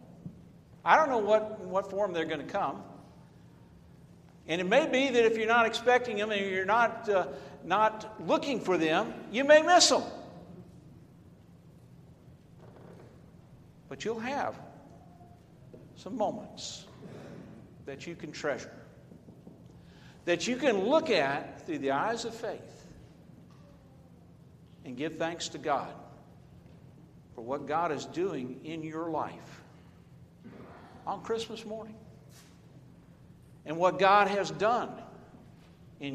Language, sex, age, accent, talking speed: English, male, 60-79, American, 125 wpm